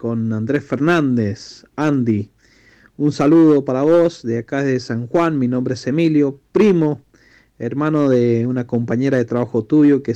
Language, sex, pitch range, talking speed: Spanish, male, 115-140 Hz, 155 wpm